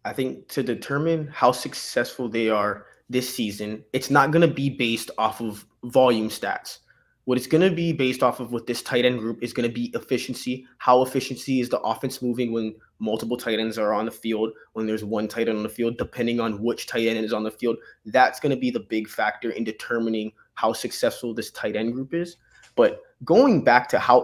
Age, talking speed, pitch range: 20-39, 225 wpm, 115-140 Hz